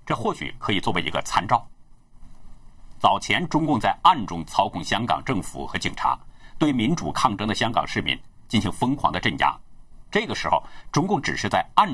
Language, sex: Chinese, male